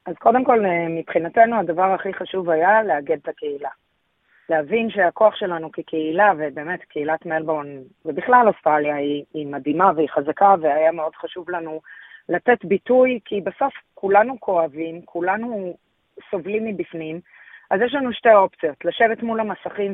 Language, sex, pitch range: Hebrew, female, 170-220 Hz